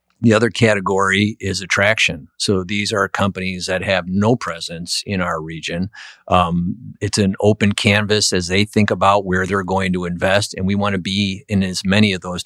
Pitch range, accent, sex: 95-105 Hz, American, male